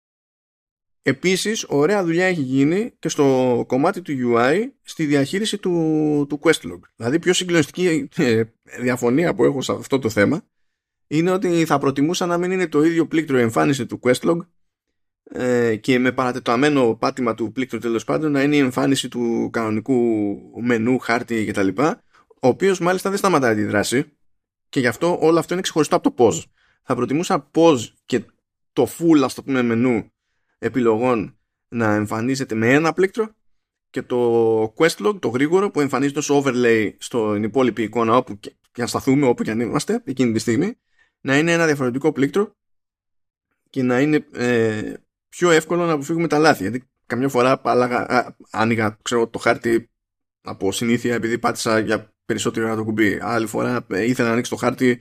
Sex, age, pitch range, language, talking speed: male, 20-39, 115-160 Hz, Greek, 165 wpm